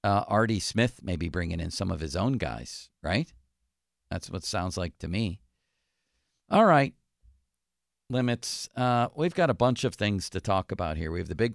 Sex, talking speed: male, 195 wpm